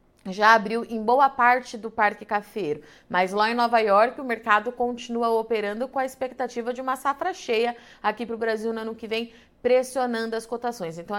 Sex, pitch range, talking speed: female, 210-240 Hz, 195 wpm